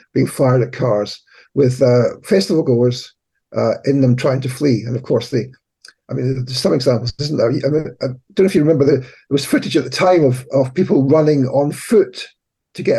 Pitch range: 125-155 Hz